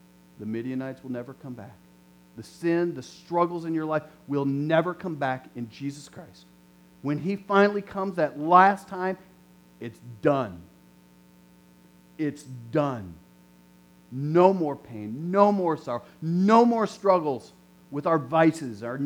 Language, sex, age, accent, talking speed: English, male, 40-59, American, 140 wpm